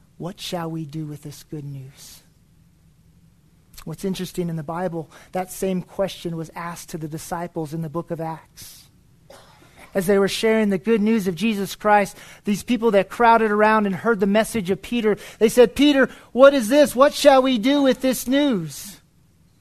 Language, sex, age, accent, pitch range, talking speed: English, male, 40-59, American, 165-215 Hz, 185 wpm